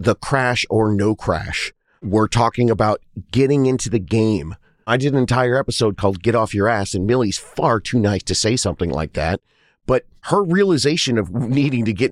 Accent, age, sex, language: American, 30-49, male, English